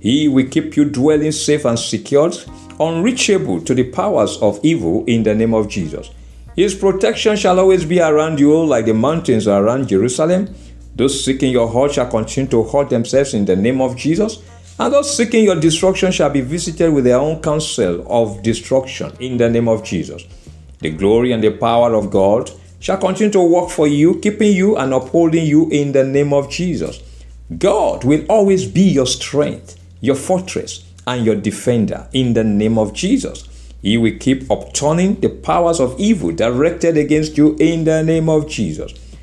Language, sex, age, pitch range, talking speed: English, male, 50-69, 110-165 Hz, 180 wpm